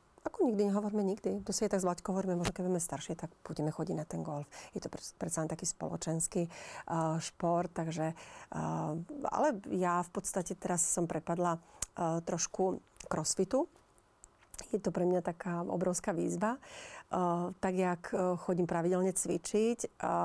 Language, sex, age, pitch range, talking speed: Slovak, female, 40-59, 170-195 Hz, 155 wpm